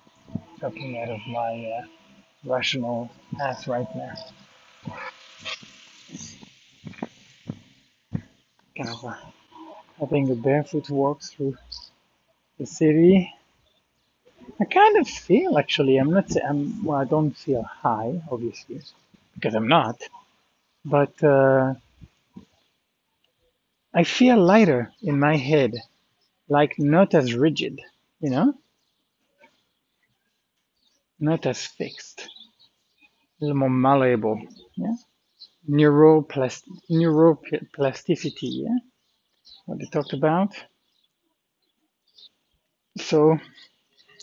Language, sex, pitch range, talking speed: English, male, 130-170 Hz, 85 wpm